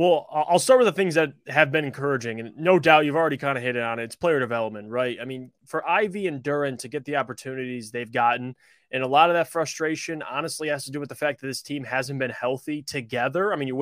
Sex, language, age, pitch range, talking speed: male, English, 20-39, 125-155 Hz, 255 wpm